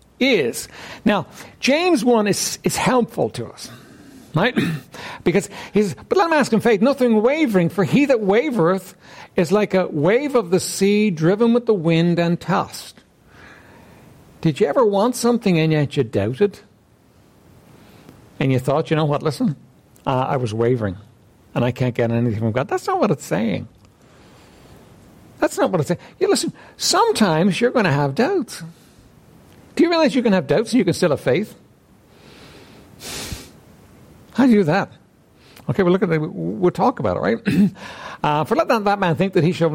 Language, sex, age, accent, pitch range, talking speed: English, male, 60-79, American, 155-230 Hz, 185 wpm